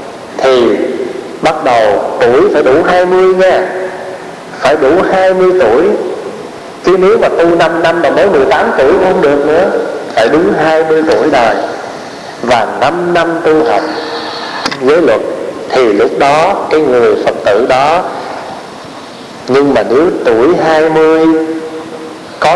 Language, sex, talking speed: Vietnamese, male, 140 wpm